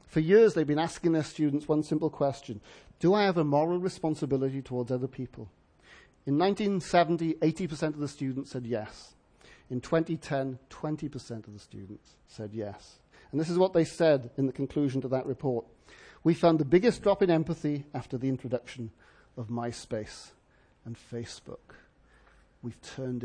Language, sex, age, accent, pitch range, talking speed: English, male, 50-69, British, 135-185 Hz, 160 wpm